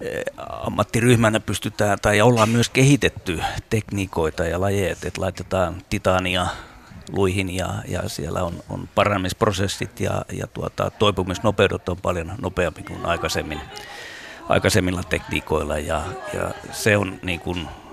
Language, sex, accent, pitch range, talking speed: Finnish, male, native, 85-100 Hz, 100 wpm